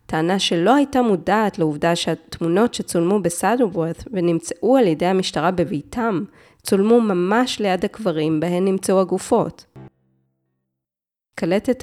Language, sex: Hebrew, female